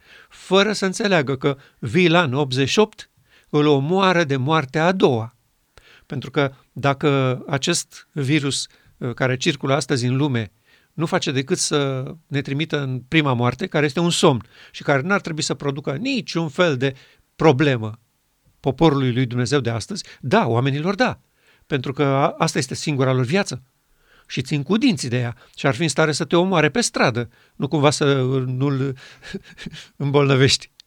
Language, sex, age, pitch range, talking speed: Romanian, male, 50-69, 130-160 Hz, 160 wpm